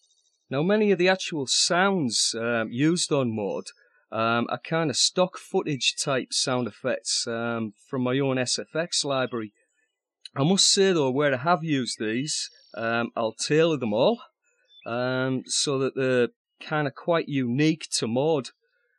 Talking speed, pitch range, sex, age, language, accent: 155 wpm, 135-215 Hz, male, 30-49, English, British